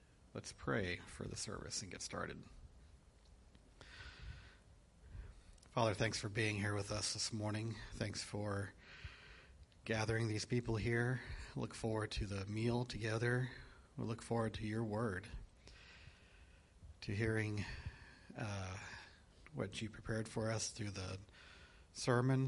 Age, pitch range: 40-59, 95-110 Hz